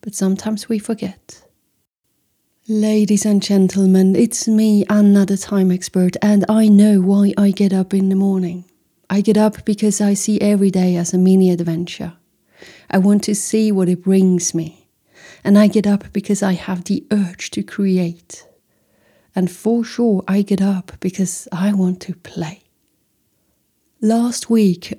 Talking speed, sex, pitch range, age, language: 160 wpm, female, 185-210 Hz, 40-59, English